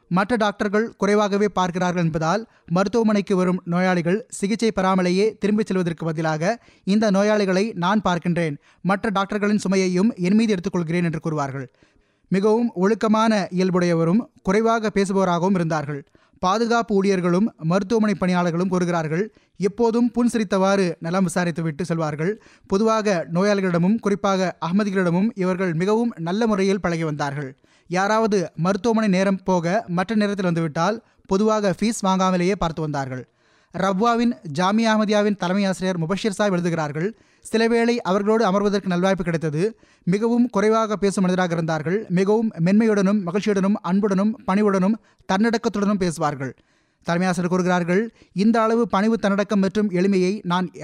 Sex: male